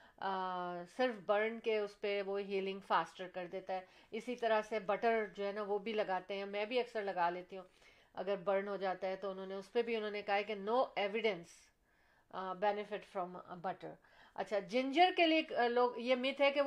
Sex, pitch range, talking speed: female, 190-235 Hz, 210 wpm